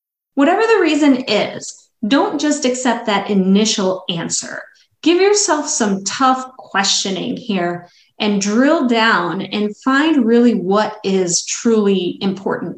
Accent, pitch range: American, 195-265 Hz